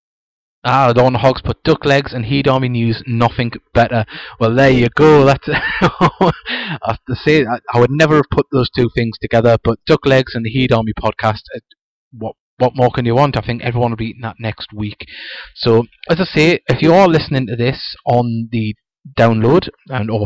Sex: male